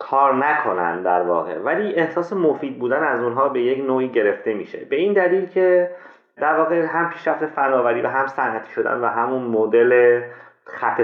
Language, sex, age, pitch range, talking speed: Persian, male, 30-49, 115-165 Hz, 175 wpm